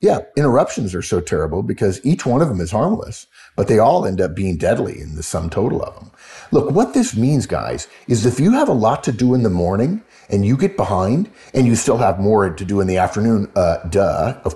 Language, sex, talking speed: English, male, 240 wpm